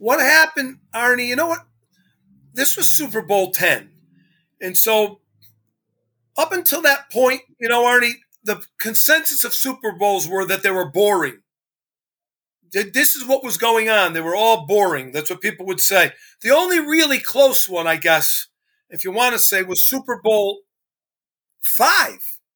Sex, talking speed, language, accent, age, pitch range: male, 160 wpm, English, American, 40-59, 205-285 Hz